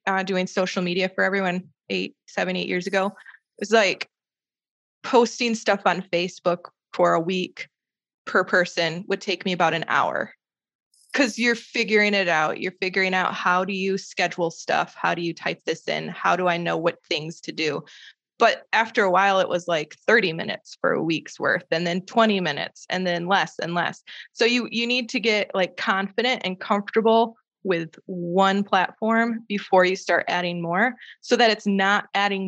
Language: English